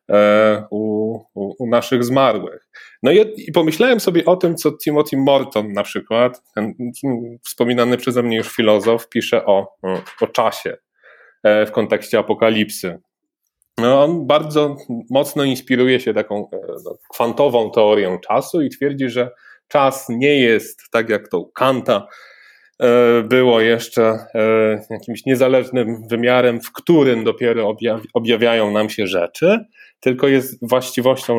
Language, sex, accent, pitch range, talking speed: Polish, male, native, 110-130 Hz, 125 wpm